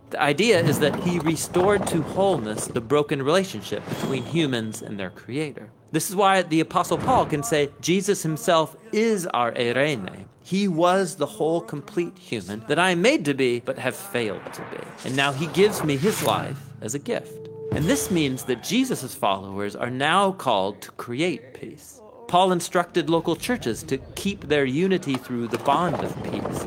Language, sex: English, male